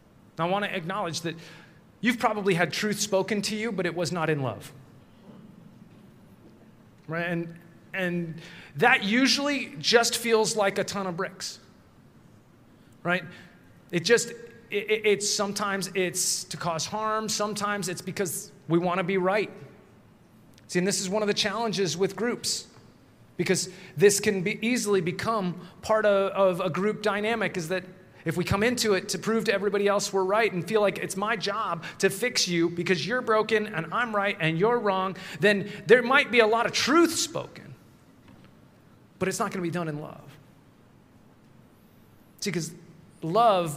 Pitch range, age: 175-210 Hz, 30-49